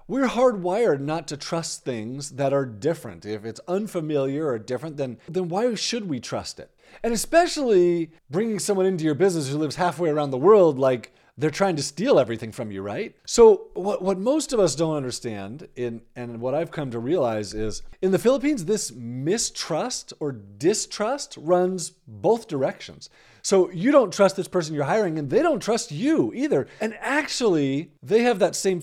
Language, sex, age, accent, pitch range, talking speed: English, male, 40-59, American, 140-195 Hz, 185 wpm